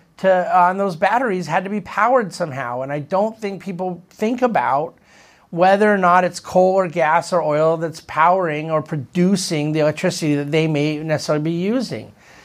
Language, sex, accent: English, male, American